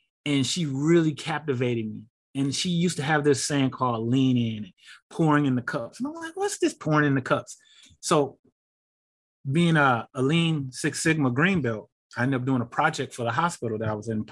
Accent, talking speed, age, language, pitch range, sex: American, 210 wpm, 30-49, English, 125-170 Hz, male